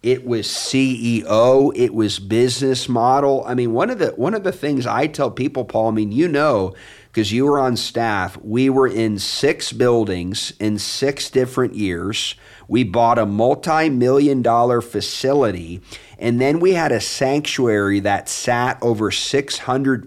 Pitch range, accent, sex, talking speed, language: 110-135 Hz, American, male, 160 wpm, English